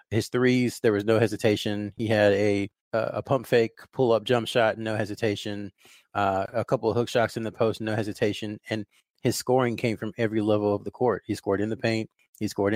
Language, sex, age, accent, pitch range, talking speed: English, male, 30-49, American, 100-115 Hz, 215 wpm